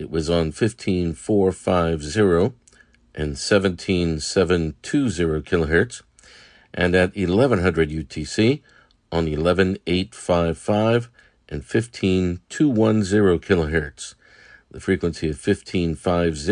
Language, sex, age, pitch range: English, male, 50-69, 85-105 Hz